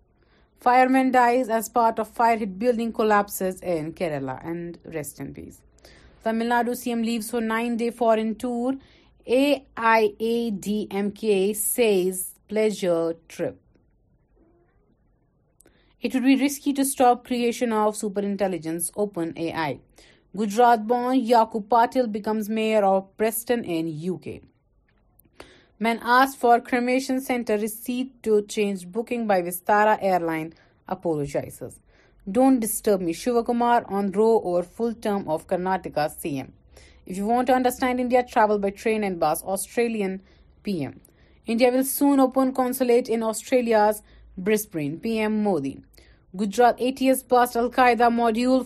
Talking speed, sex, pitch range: 125 wpm, female, 195-240 Hz